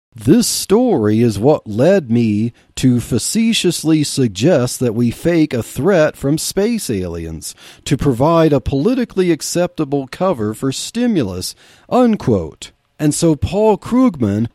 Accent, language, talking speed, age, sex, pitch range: American, English, 120 wpm, 40-59, male, 120-180 Hz